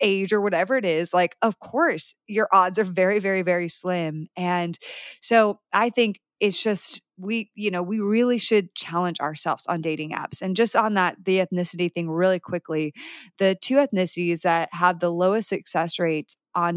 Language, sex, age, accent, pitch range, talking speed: English, female, 20-39, American, 165-205 Hz, 185 wpm